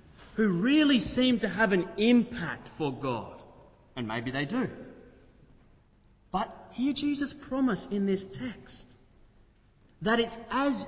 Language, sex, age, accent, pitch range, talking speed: English, male, 30-49, Australian, 145-210 Hz, 125 wpm